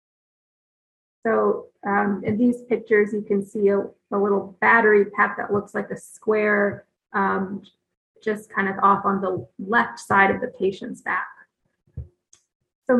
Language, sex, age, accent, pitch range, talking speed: English, female, 30-49, American, 200-240 Hz, 150 wpm